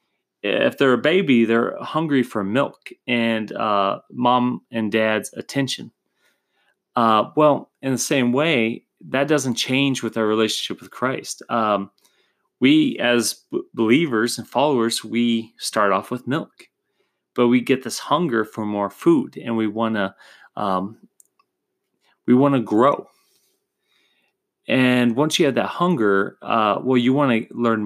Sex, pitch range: male, 110-130 Hz